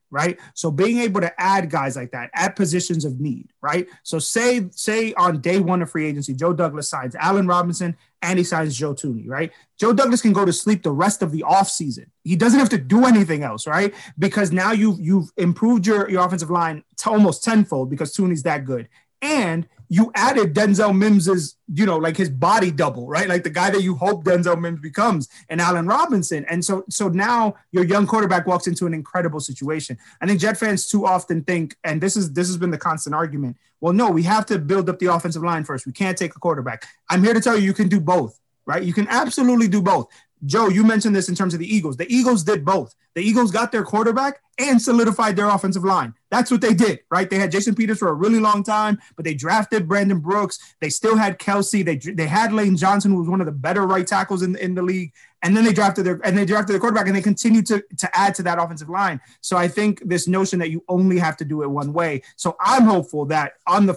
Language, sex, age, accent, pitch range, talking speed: English, male, 30-49, American, 165-210 Hz, 240 wpm